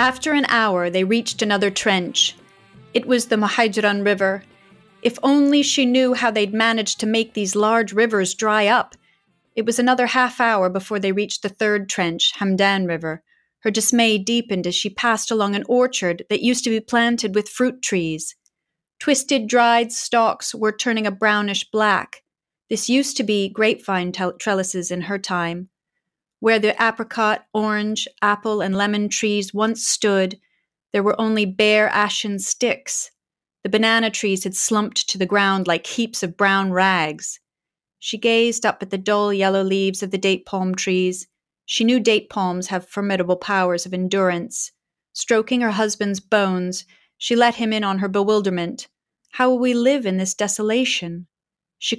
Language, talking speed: English, 165 wpm